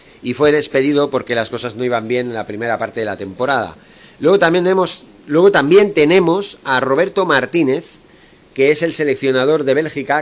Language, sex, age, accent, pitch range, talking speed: Spanish, male, 40-59, Spanish, 125-155 Hz, 170 wpm